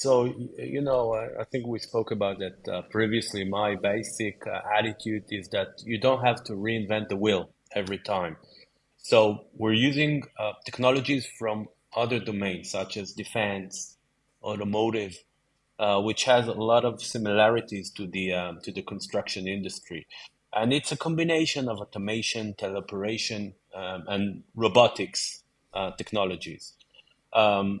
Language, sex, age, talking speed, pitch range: English, male, 30-49, 140 wpm, 100-120 Hz